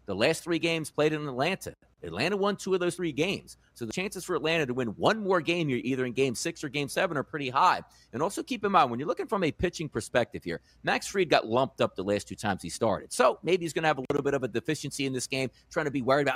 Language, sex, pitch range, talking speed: English, male, 130-185 Hz, 290 wpm